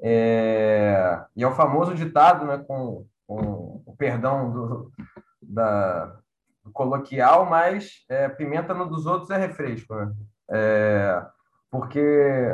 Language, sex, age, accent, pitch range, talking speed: Portuguese, male, 20-39, Brazilian, 125-160 Hz, 105 wpm